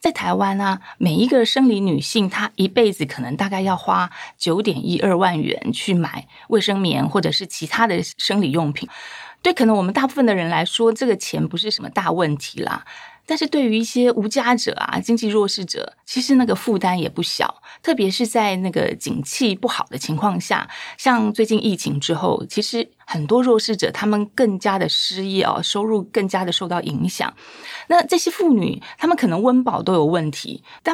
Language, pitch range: Chinese, 185-240 Hz